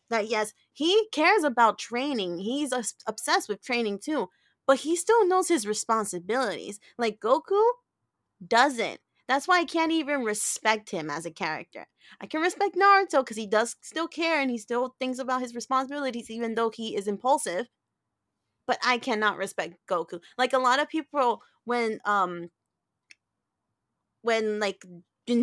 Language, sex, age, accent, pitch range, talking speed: English, female, 20-39, American, 200-260 Hz, 160 wpm